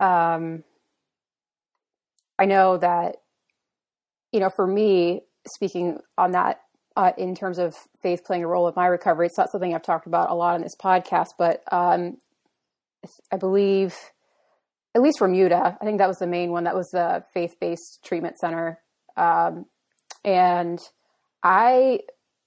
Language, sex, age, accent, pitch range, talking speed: English, female, 30-49, American, 175-190 Hz, 155 wpm